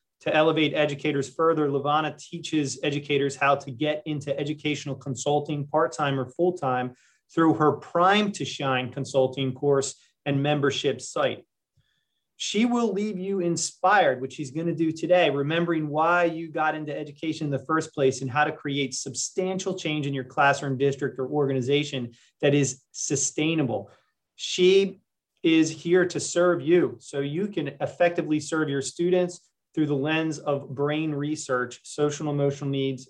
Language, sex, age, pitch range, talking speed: English, male, 30-49, 135-160 Hz, 150 wpm